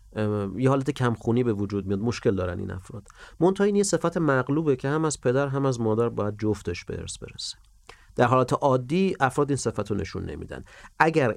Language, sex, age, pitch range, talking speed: Persian, male, 40-59, 95-135 Hz, 195 wpm